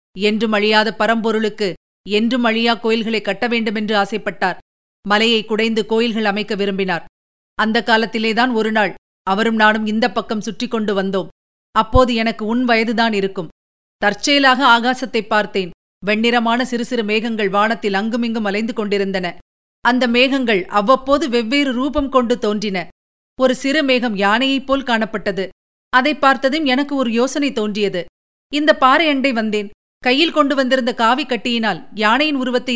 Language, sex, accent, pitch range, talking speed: Tamil, female, native, 215-260 Hz, 130 wpm